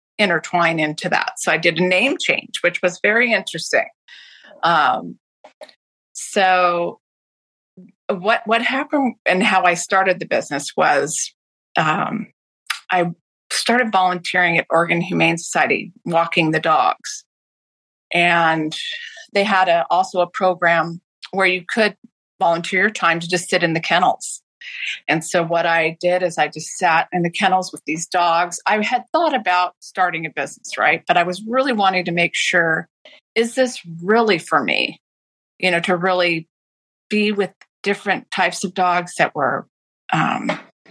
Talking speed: 155 wpm